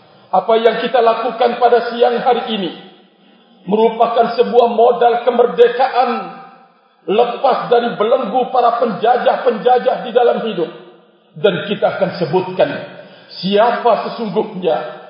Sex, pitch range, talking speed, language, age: male, 205-250 Hz, 105 wpm, Indonesian, 50-69